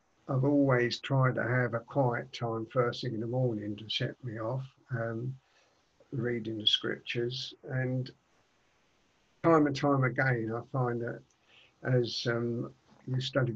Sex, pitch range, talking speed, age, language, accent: male, 120-140 Hz, 145 wpm, 50-69, English, British